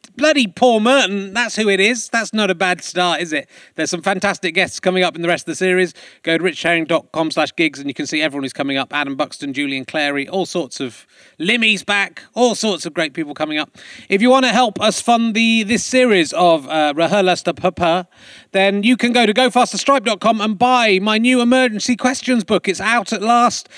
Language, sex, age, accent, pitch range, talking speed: English, male, 30-49, British, 175-235 Hz, 220 wpm